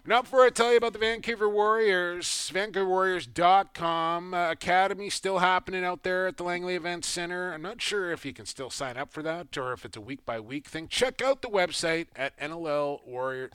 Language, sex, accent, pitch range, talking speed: English, male, American, 140-195 Hz, 205 wpm